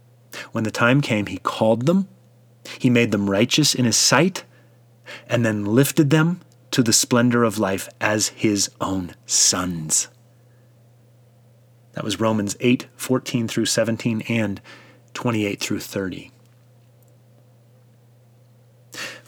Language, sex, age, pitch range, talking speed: English, male, 30-49, 120-130 Hz, 120 wpm